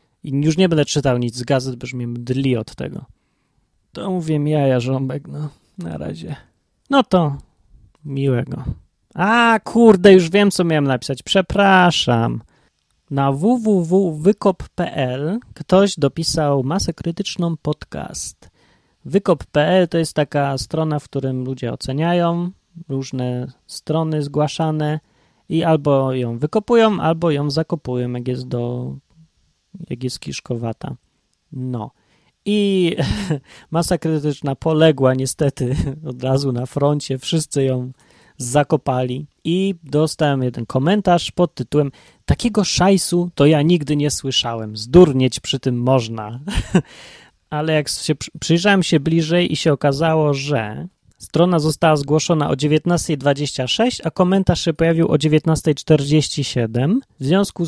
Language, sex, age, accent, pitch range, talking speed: Polish, male, 20-39, native, 130-170 Hz, 120 wpm